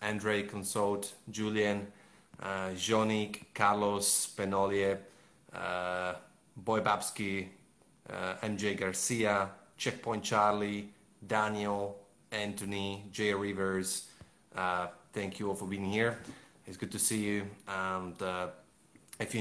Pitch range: 95-110 Hz